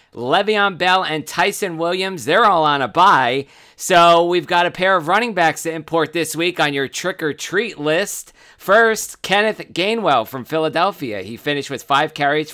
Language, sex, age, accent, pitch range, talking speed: English, male, 50-69, American, 145-175 Hz, 170 wpm